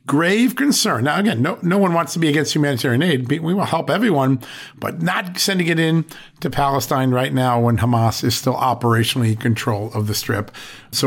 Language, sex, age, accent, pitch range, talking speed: English, male, 50-69, American, 120-155 Hz, 200 wpm